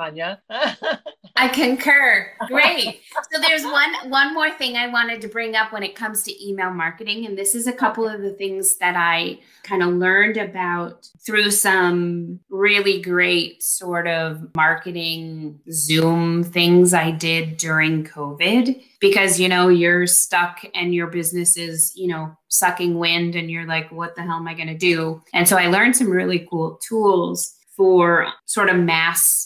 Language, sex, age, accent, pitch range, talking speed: English, female, 20-39, American, 170-195 Hz, 170 wpm